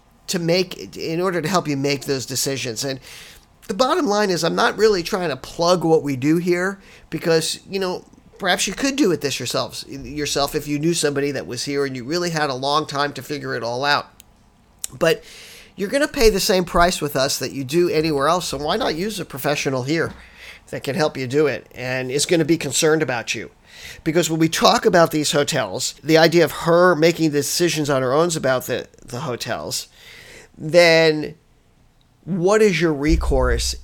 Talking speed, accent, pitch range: 205 wpm, American, 130-175 Hz